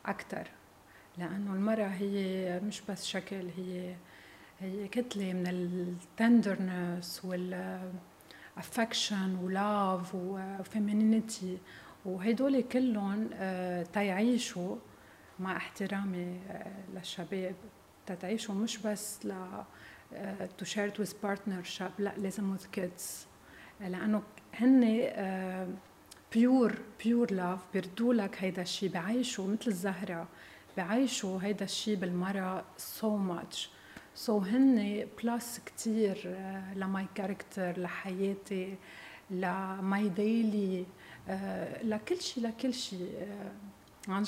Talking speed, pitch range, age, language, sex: 85 wpm, 185-215 Hz, 40-59, Arabic, female